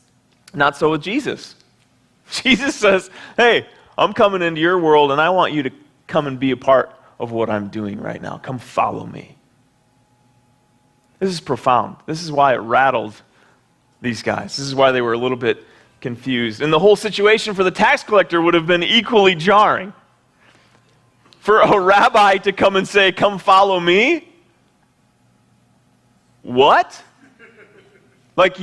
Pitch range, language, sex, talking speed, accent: 135-215 Hz, English, male, 155 wpm, American